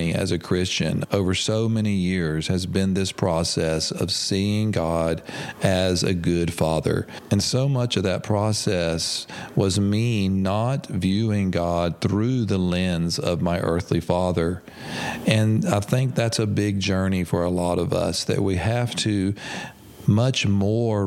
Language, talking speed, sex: English, 155 wpm, male